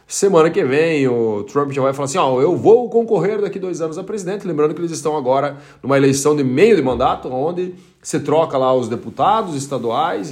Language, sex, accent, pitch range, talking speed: Portuguese, male, Brazilian, 130-165 Hz, 215 wpm